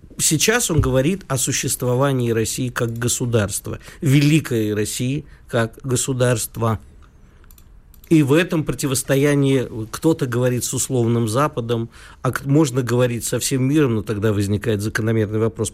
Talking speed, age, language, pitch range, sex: 120 wpm, 50-69, Russian, 115-145 Hz, male